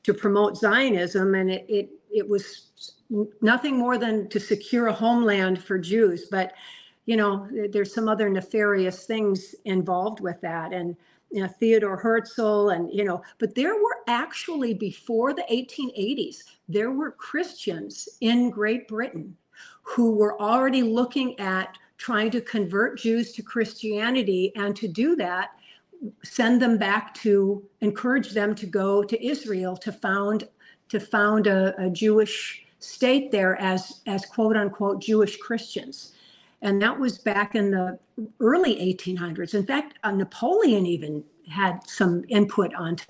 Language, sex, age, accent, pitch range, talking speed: English, female, 50-69, American, 195-235 Hz, 145 wpm